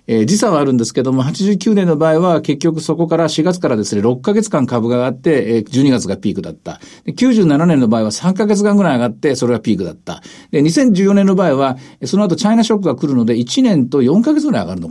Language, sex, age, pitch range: Japanese, male, 50-69, 130-210 Hz